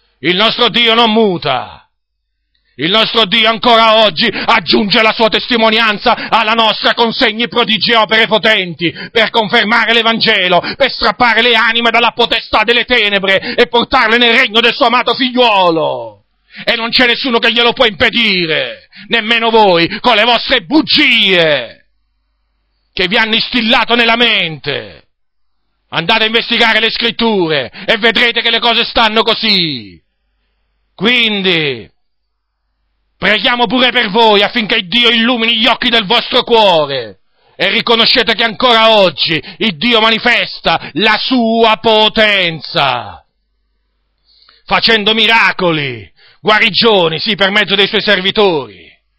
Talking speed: 130 wpm